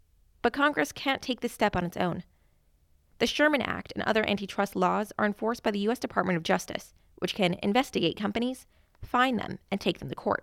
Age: 20-39